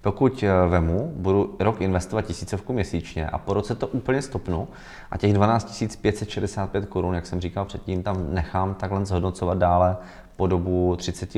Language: Czech